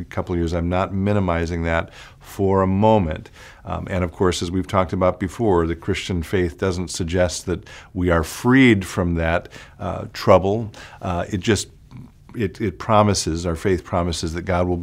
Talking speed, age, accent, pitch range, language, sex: 180 wpm, 50-69, American, 90-110 Hz, English, male